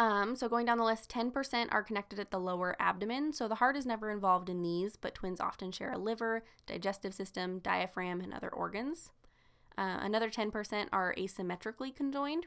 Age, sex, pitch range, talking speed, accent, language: 10-29, female, 190-235 Hz, 190 wpm, American, English